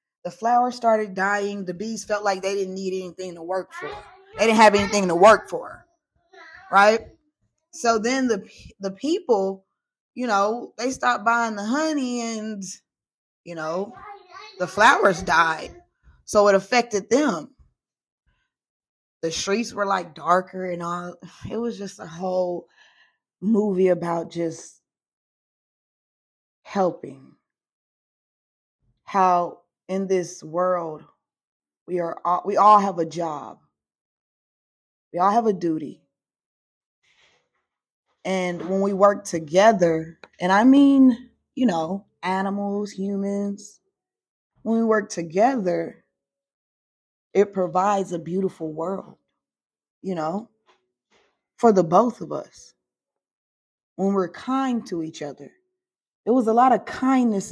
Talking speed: 125 wpm